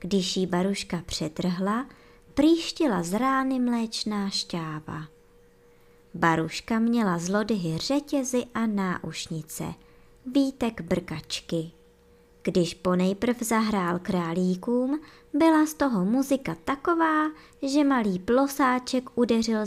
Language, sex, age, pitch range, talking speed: Czech, male, 20-39, 170-250 Hz, 95 wpm